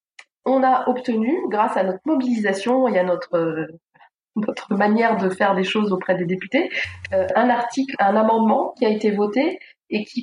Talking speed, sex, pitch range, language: 170 wpm, female, 205-255 Hz, French